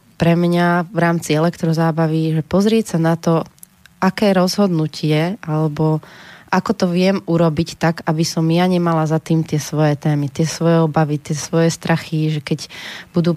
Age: 20-39